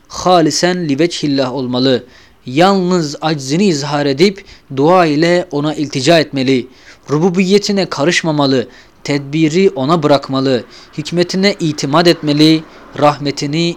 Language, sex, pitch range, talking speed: Turkish, male, 135-175 Hz, 95 wpm